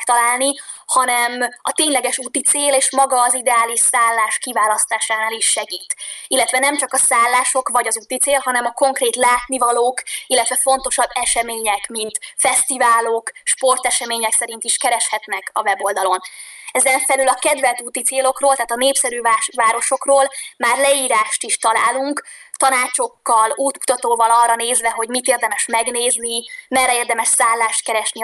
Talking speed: 135 wpm